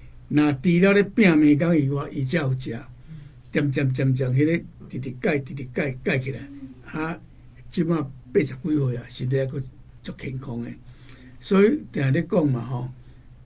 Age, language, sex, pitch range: 60-79, Chinese, male, 125-160 Hz